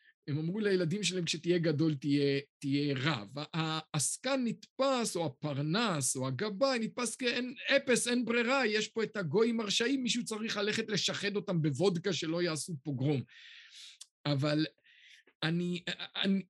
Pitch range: 155-215 Hz